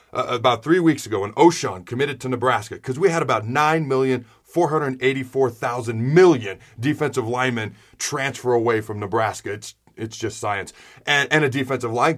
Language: English